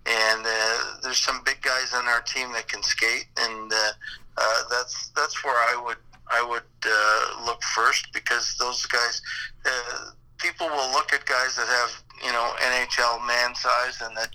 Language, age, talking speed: English, 50-69, 180 wpm